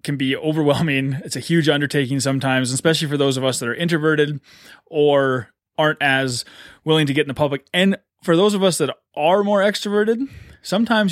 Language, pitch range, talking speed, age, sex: English, 130-155 Hz, 190 wpm, 20-39, male